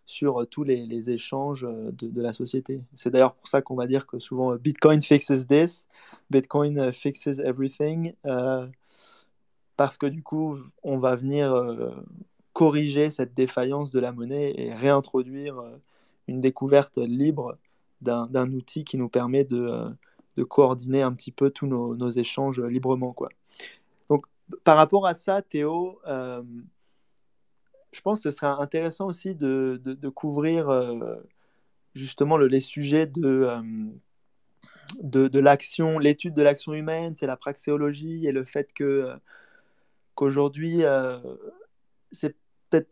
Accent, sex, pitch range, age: French, male, 130-150 Hz, 20-39